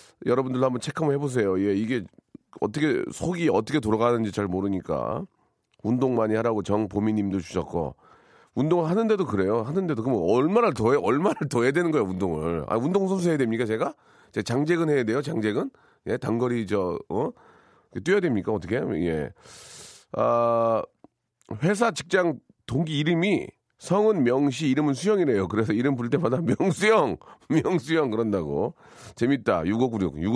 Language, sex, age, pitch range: Korean, male, 40-59, 110-170 Hz